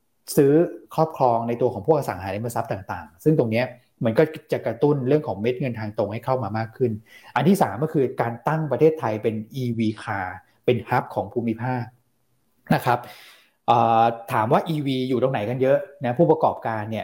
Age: 20-39